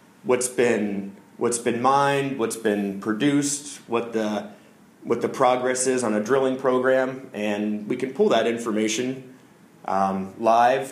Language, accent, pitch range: English, American, 110-125 Hz